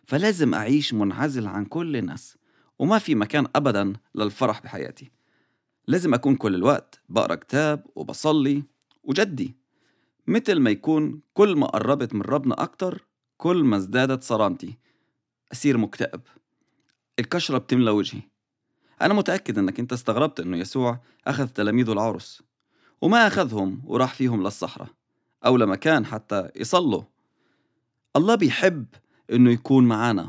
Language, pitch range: English, 120-155 Hz